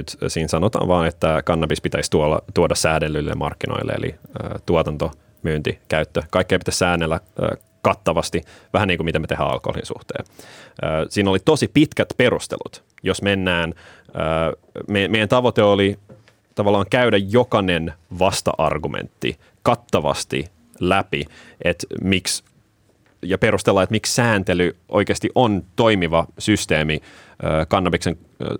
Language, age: Finnish, 30-49